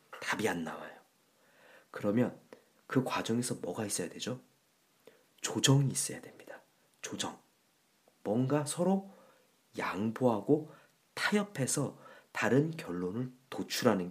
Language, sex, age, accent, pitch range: Korean, male, 40-59, native, 125-185 Hz